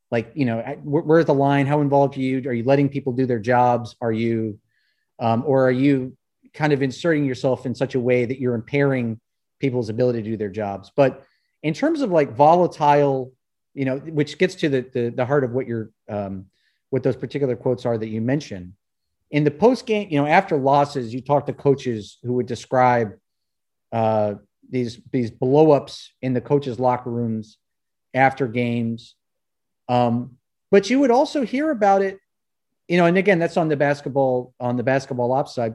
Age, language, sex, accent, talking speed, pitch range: 30-49, English, male, American, 190 wpm, 120-150 Hz